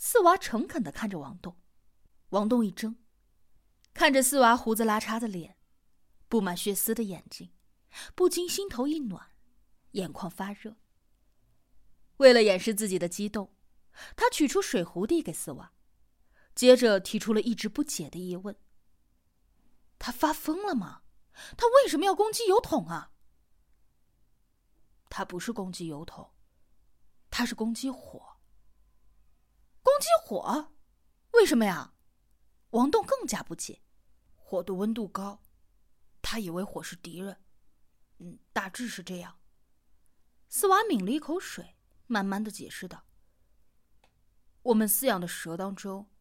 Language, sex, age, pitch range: Chinese, female, 20-39, 195-290 Hz